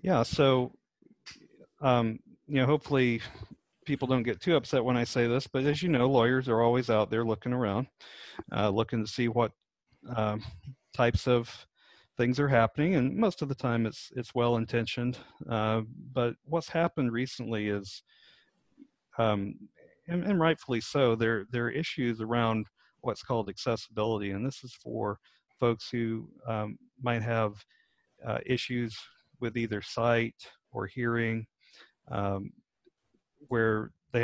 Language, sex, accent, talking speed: English, male, American, 145 wpm